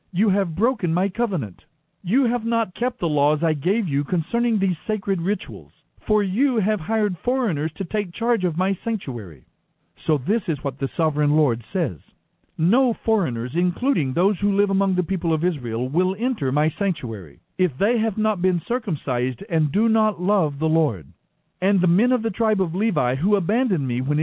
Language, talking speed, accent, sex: English, 190 wpm, American, male